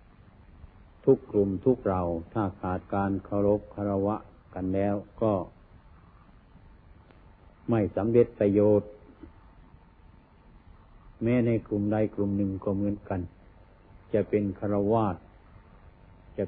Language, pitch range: Thai, 90-105 Hz